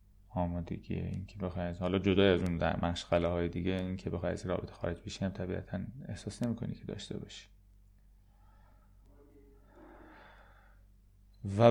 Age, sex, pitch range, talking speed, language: 30-49, male, 95-110 Hz, 130 wpm, Persian